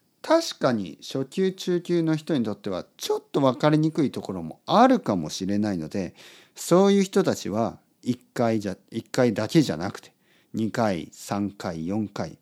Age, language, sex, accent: 50-69, Japanese, male, native